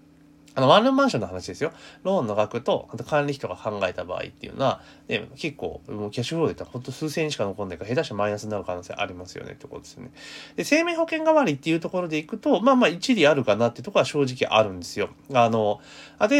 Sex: male